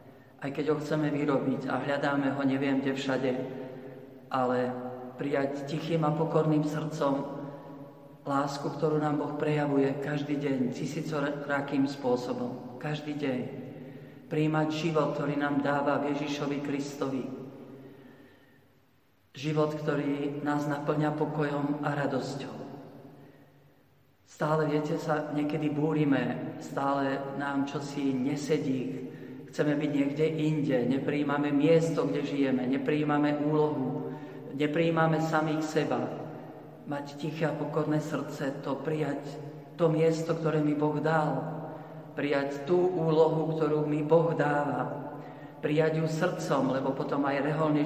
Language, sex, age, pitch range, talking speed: Slovak, male, 50-69, 135-155 Hz, 115 wpm